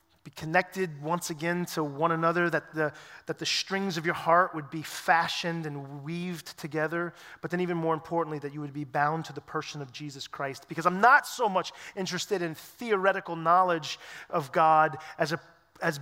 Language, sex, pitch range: English, male, 145-170 Hz